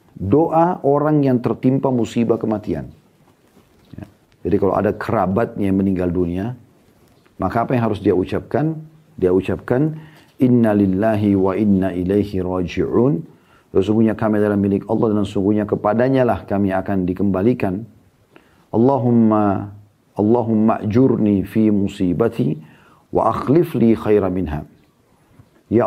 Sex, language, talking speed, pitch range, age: male, Indonesian, 115 wpm, 95-120 Hz, 40-59